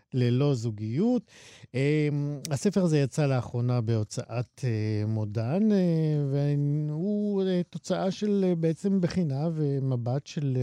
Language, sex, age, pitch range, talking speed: Hebrew, male, 50-69, 120-165 Hz, 85 wpm